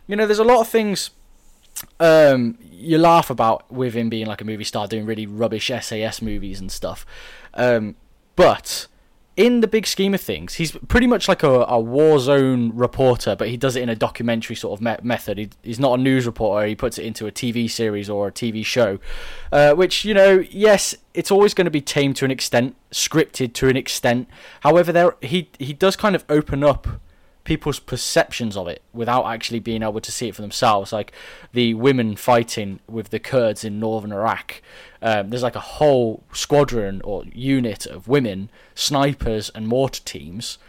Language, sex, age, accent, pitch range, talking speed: English, male, 20-39, British, 115-155 Hz, 200 wpm